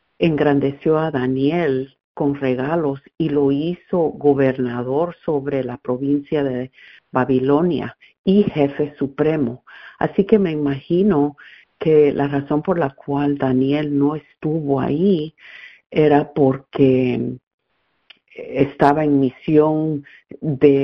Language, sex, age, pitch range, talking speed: English, female, 50-69, 135-160 Hz, 105 wpm